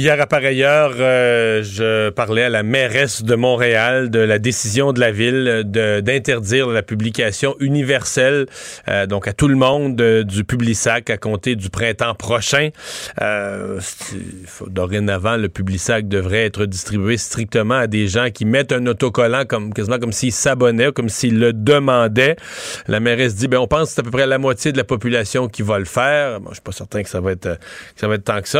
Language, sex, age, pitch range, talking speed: French, male, 40-59, 110-140 Hz, 205 wpm